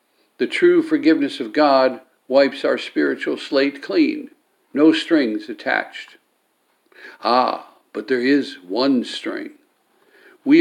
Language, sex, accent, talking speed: English, male, American, 115 wpm